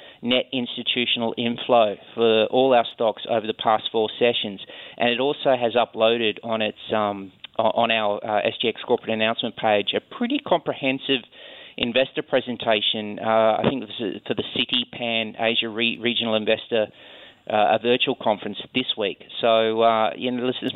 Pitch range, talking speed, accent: 115-130 Hz, 155 wpm, Australian